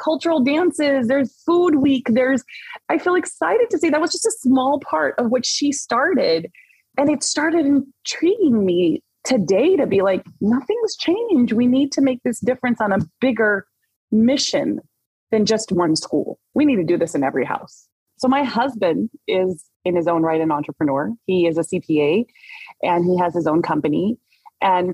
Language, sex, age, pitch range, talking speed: English, female, 20-39, 180-280 Hz, 180 wpm